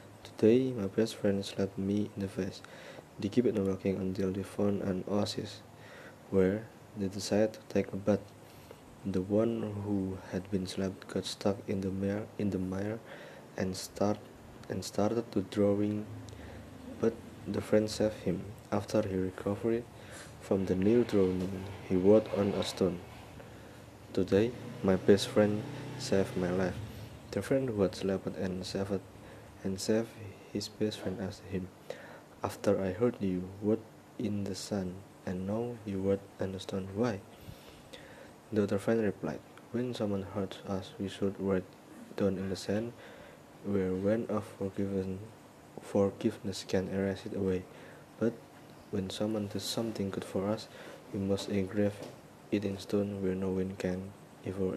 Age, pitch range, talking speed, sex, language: 20-39, 95-110 Hz, 155 wpm, male, Indonesian